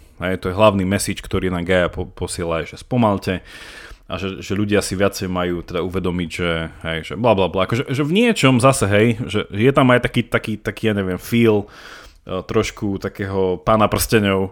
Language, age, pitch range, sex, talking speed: Slovak, 20-39, 95-115 Hz, male, 195 wpm